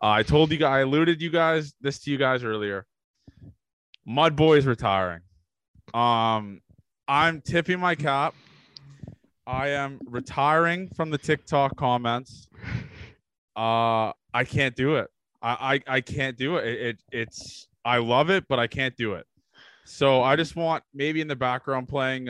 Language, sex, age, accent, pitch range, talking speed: English, male, 20-39, American, 120-155 Hz, 160 wpm